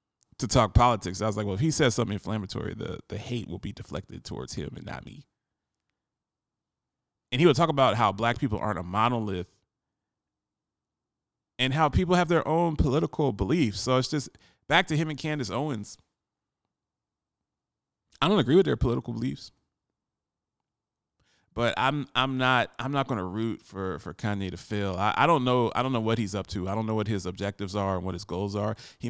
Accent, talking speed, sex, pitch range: American, 195 wpm, male, 105-135 Hz